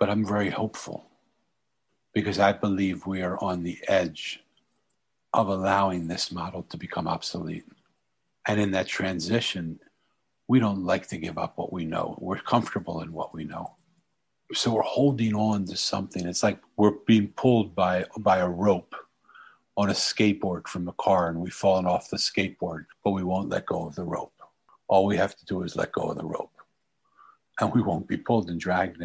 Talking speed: 190 wpm